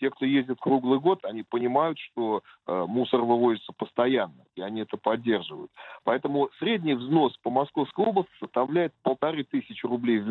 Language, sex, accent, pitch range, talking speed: Russian, male, native, 110-145 Hz, 150 wpm